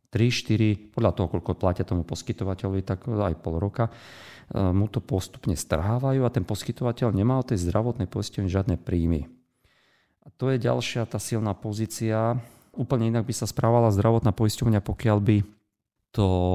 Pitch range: 105-135 Hz